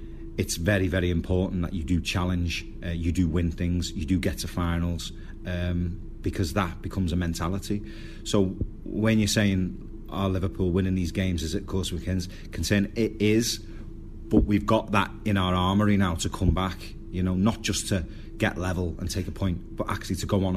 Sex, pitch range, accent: male, 85-100 Hz, British